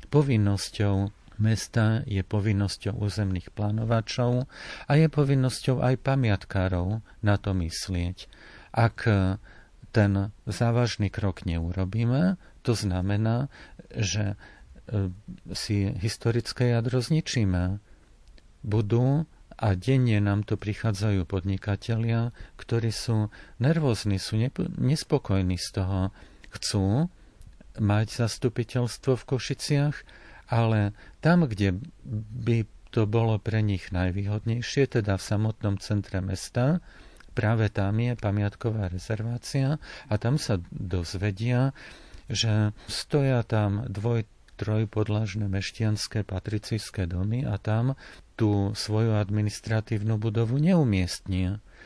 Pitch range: 100-120 Hz